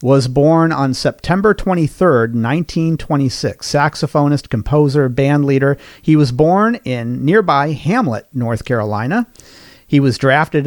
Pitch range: 130-165 Hz